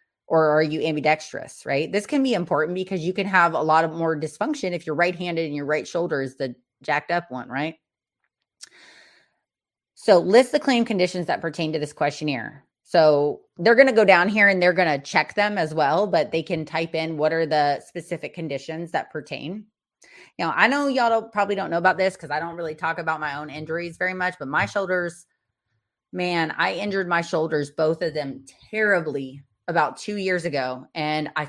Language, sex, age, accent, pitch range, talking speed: English, female, 30-49, American, 155-195 Hz, 200 wpm